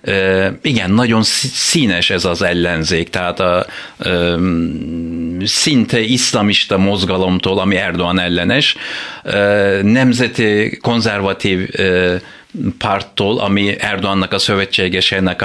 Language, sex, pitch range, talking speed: Hungarian, male, 95-120 Hz, 100 wpm